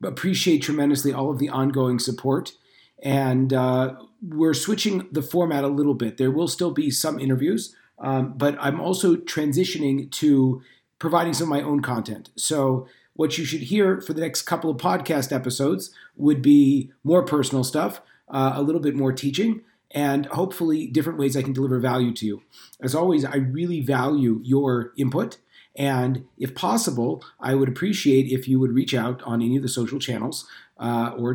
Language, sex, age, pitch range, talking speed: English, male, 40-59, 130-160 Hz, 180 wpm